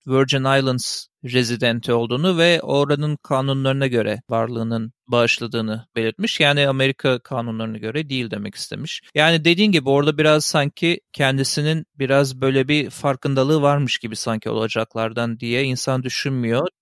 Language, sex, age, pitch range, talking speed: Turkish, male, 40-59, 130-160 Hz, 130 wpm